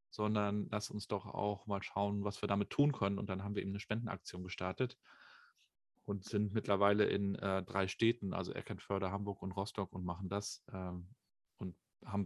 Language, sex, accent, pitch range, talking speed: German, male, German, 100-115 Hz, 185 wpm